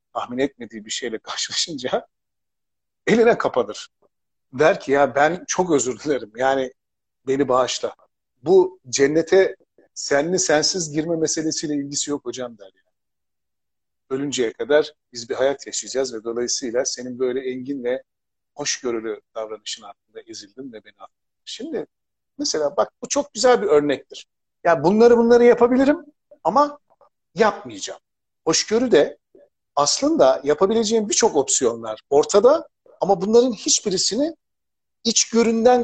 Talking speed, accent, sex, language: 120 wpm, native, male, Turkish